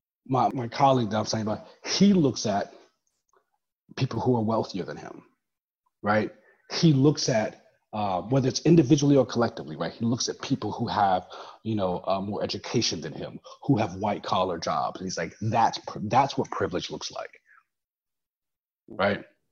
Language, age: English, 30-49